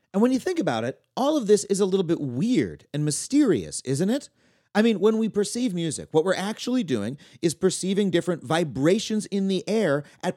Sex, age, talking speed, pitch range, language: male, 30-49, 210 wpm, 165-230 Hz, English